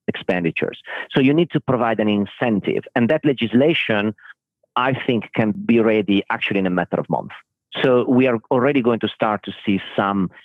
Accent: Italian